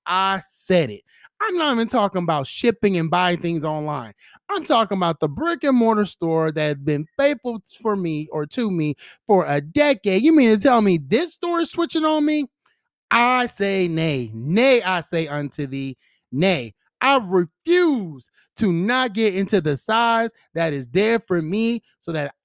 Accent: American